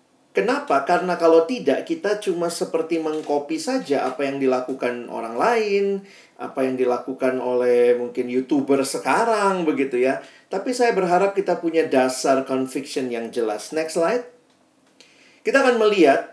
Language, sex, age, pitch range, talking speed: Indonesian, male, 40-59, 140-180 Hz, 135 wpm